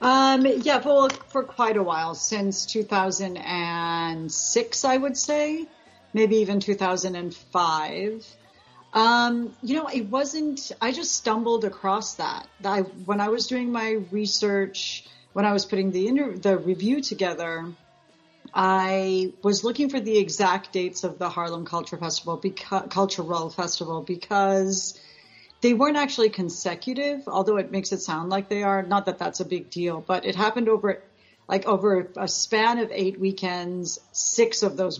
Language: English